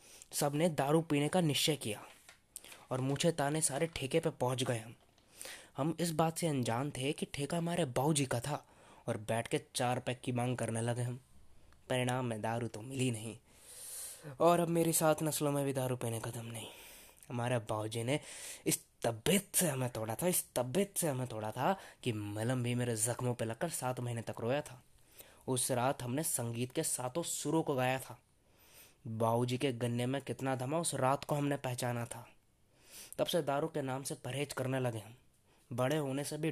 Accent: native